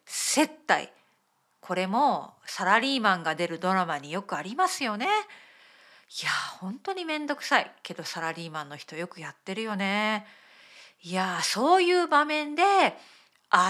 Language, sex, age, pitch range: Japanese, female, 40-59, 180-290 Hz